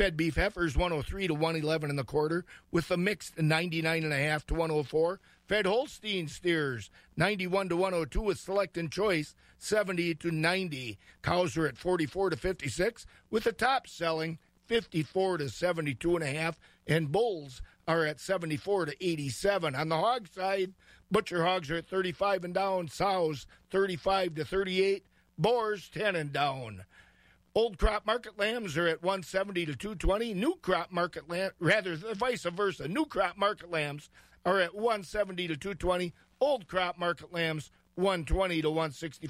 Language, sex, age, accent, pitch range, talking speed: English, male, 50-69, American, 160-195 Hz, 195 wpm